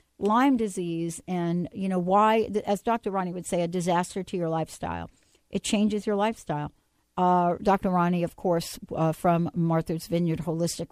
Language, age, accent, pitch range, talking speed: English, 60-79, American, 165-200 Hz, 165 wpm